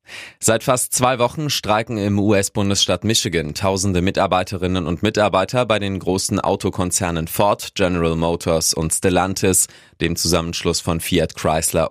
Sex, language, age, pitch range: male, German, 20-39, 85-105 Hz